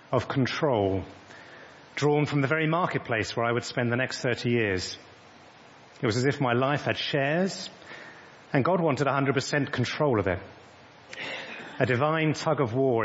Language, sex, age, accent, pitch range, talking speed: English, male, 40-59, British, 115-155 Hz, 160 wpm